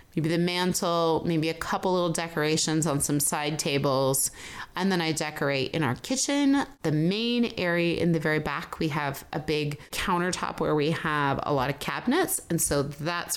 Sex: female